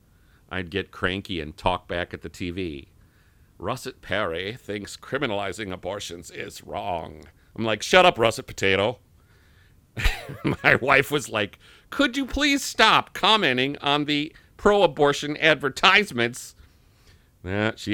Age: 50-69